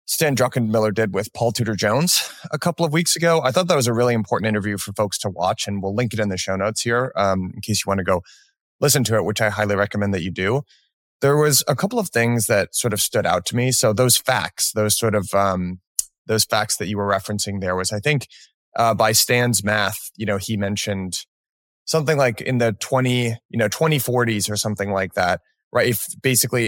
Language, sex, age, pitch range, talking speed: English, male, 20-39, 100-125 Hz, 230 wpm